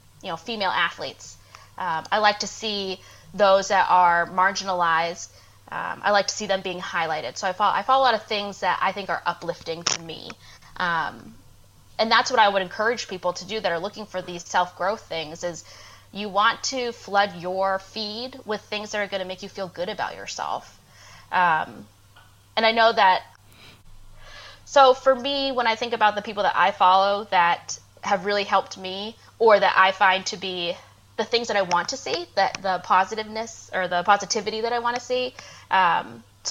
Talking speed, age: 195 wpm, 20-39